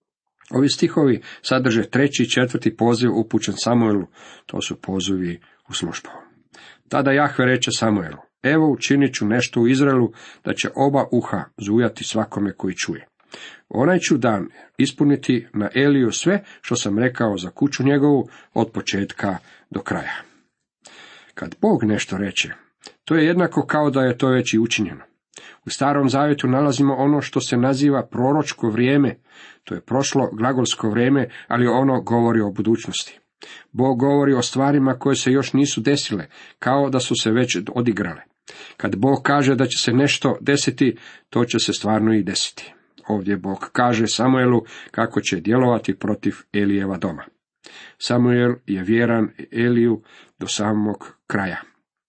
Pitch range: 110-135 Hz